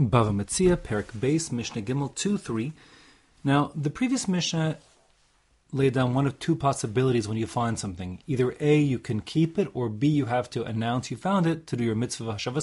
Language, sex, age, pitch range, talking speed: English, male, 30-49, 115-150 Hz, 190 wpm